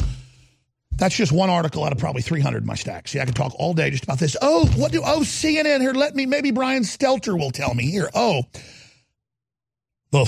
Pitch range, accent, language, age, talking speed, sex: 125-170 Hz, American, English, 50-69, 215 wpm, male